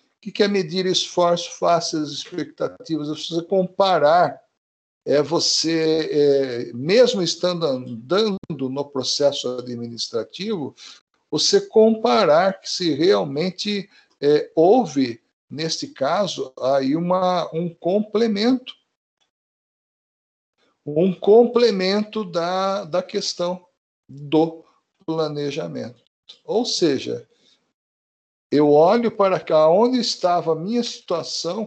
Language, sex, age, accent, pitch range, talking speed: Portuguese, male, 60-79, Brazilian, 145-200 Hz, 95 wpm